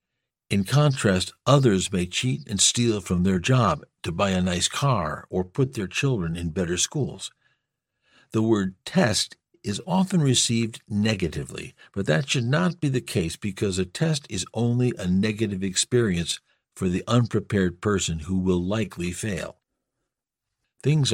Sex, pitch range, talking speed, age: male, 90-125 Hz, 150 wpm, 60-79